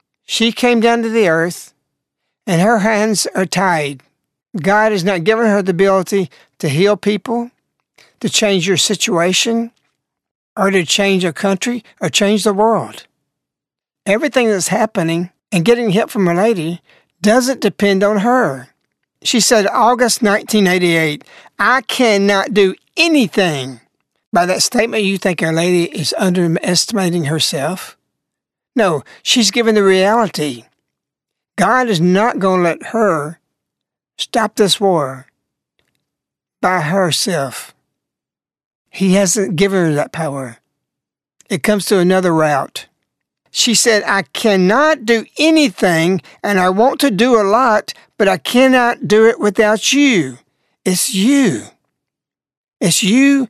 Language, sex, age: English, male, 60-79